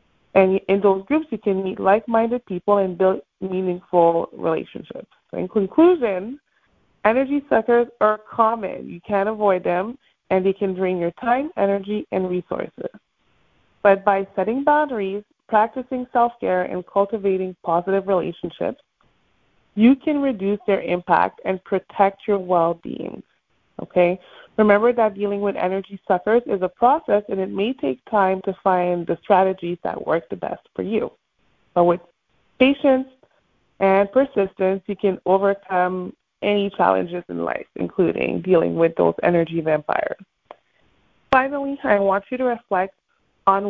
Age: 30-49